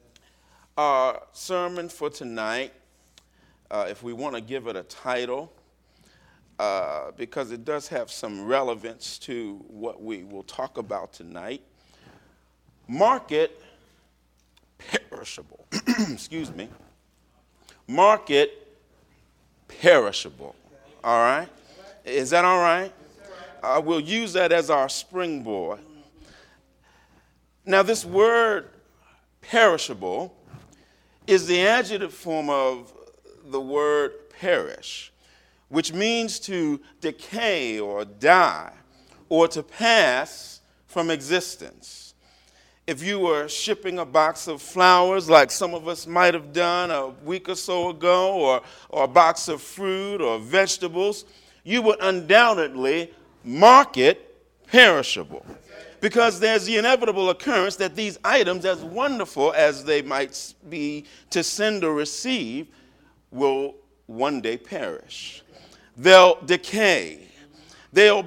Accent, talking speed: American, 110 wpm